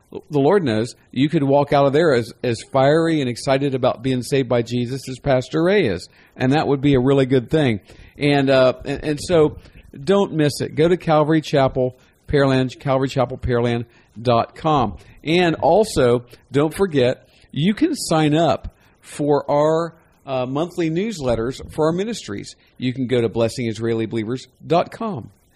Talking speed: 155 wpm